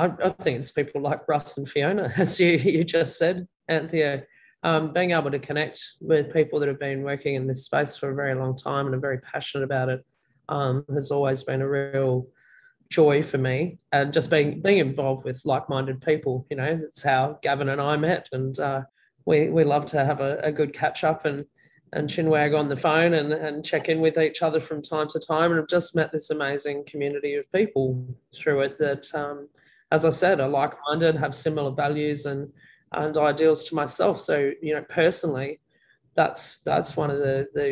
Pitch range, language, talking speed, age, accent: 140-155 Hz, English, 205 wpm, 20-39, Australian